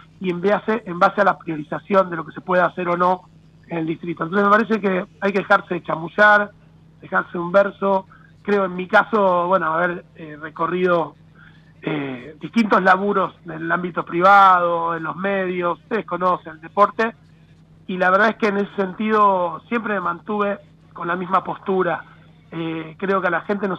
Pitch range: 165-205 Hz